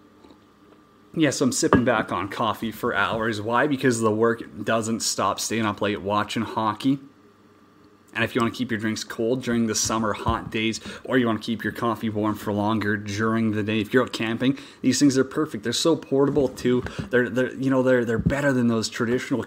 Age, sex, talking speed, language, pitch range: 30-49, male, 215 wpm, English, 110-135 Hz